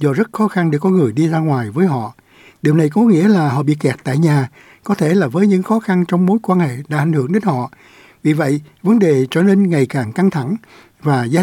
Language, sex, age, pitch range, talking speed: Vietnamese, male, 60-79, 130-190 Hz, 265 wpm